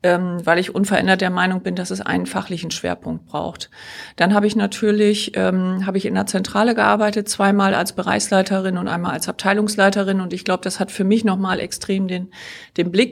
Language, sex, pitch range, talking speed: German, female, 180-205 Hz, 200 wpm